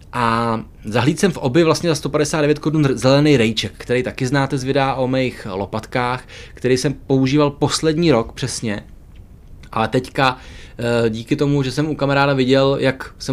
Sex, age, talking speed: male, 20-39, 160 wpm